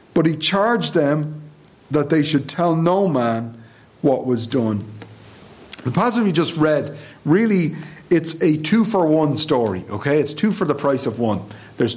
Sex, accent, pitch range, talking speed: male, Irish, 120-160 Hz, 170 wpm